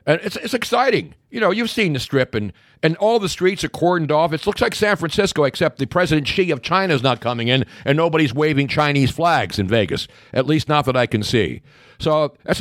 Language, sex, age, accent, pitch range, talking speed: English, male, 50-69, American, 115-155 Hz, 235 wpm